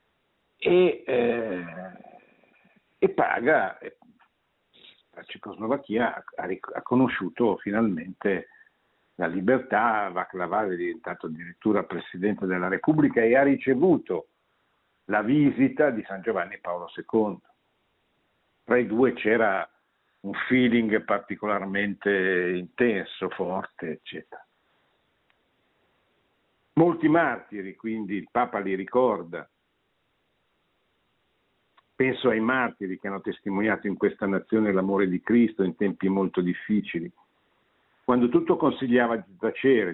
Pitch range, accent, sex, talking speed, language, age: 95-125 Hz, native, male, 100 wpm, Italian, 60-79